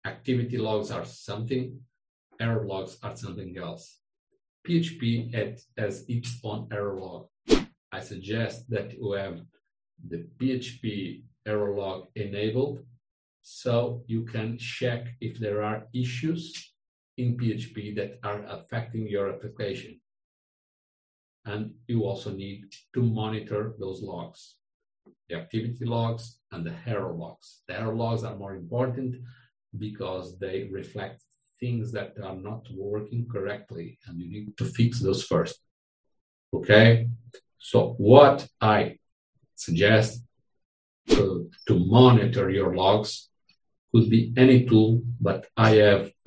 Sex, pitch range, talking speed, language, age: male, 100-120 Hz, 125 wpm, English, 50-69